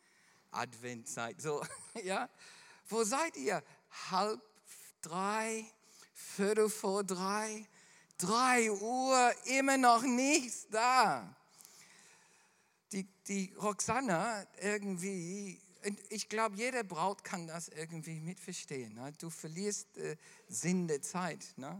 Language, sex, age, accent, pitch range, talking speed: German, male, 50-69, German, 165-220 Hz, 95 wpm